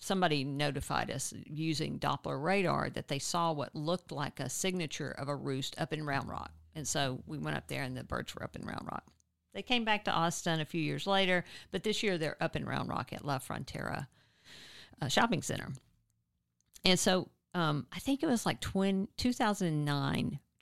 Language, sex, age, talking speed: English, female, 50-69, 200 wpm